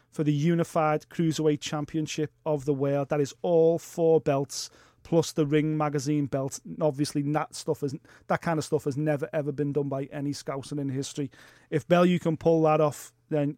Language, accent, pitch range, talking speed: English, British, 140-155 Hz, 195 wpm